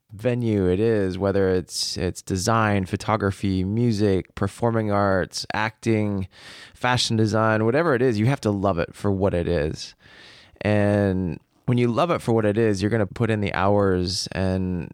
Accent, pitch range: American, 95-115 Hz